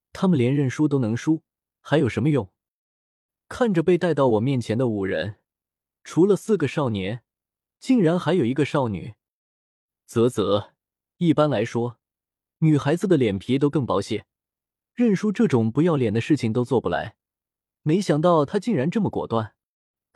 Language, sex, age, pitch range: Chinese, male, 20-39, 110-155 Hz